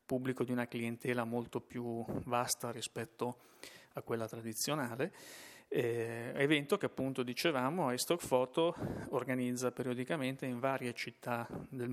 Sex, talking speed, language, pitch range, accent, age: male, 115 wpm, Italian, 115-130 Hz, native, 30-49